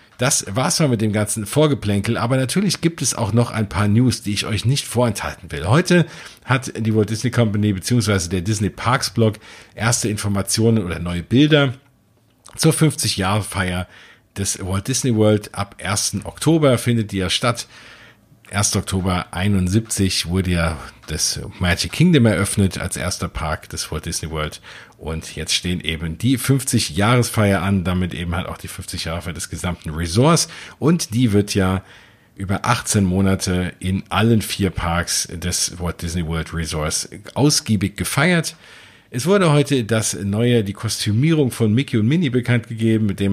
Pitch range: 95-120 Hz